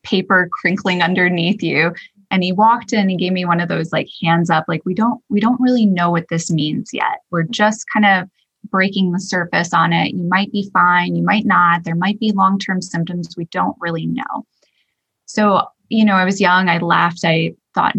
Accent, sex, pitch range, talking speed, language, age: American, female, 170-205 Hz, 210 wpm, English, 20-39